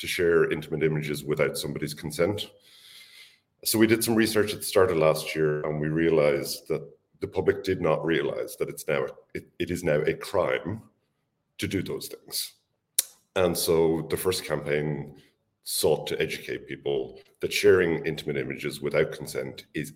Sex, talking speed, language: male, 170 wpm, English